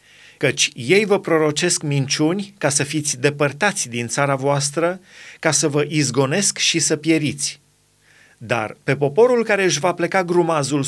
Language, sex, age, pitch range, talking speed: Romanian, male, 30-49, 145-180 Hz, 150 wpm